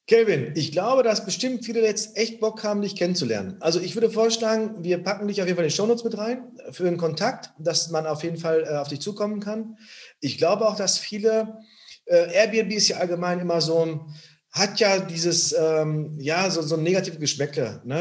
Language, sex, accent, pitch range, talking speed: German, male, German, 160-195 Hz, 210 wpm